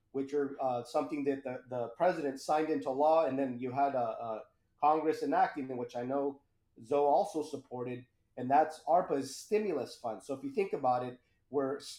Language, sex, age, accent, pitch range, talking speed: English, male, 30-49, American, 130-165 Hz, 190 wpm